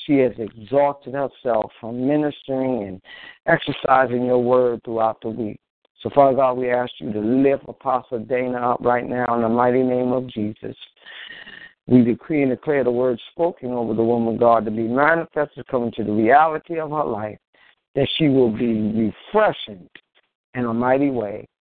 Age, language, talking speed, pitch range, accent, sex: 50-69, English, 170 wpm, 115-140 Hz, American, male